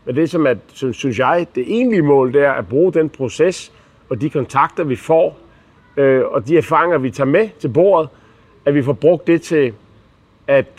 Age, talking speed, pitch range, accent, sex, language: 40-59, 190 wpm, 115-165 Hz, native, male, Danish